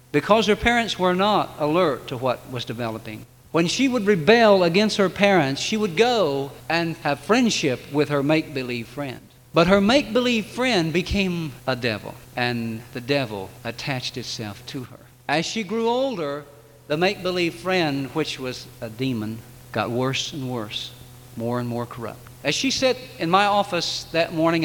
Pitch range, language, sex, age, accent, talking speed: 125-185 Hz, English, male, 50-69, American, 165 wpm